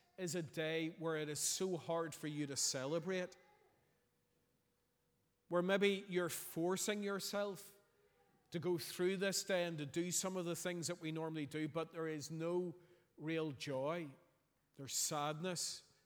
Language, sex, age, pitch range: English, male, 40-59, 155-195 Hz